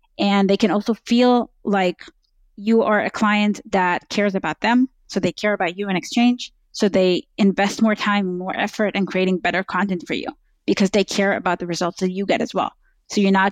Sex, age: female, 20-39